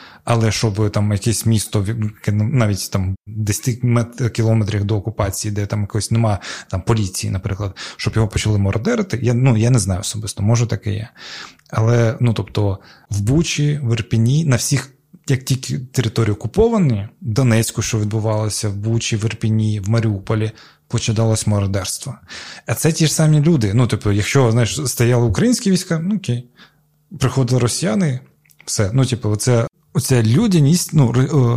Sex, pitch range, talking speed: male, 105-130 Hz, 150 wpm